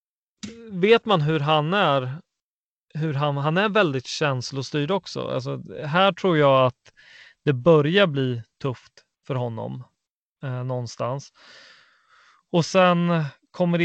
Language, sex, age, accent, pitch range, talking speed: English, male, 30-49, Swedish, 130-175 Hz, 120 wpm